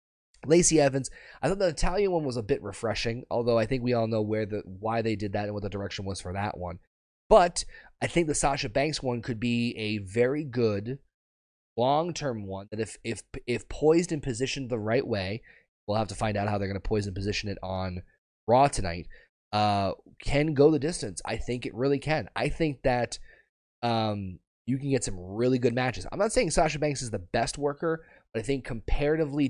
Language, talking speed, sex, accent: English, 215 wpm, male, American